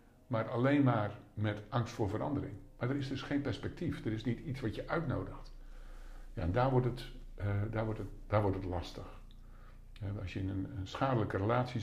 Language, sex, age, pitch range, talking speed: Dutch, male, 50-69, 100-135 Hz, 160 wpm